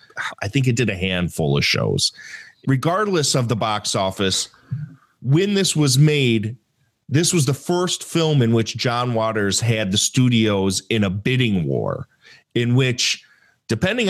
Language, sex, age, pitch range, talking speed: English, male, 40-59, 110-155 Hz, 155 wpm